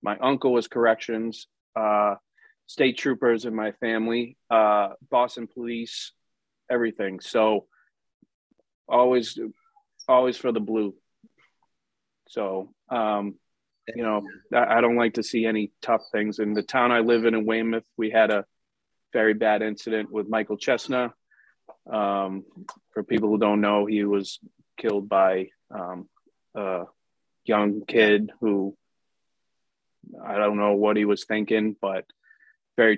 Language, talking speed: English, 135 wpm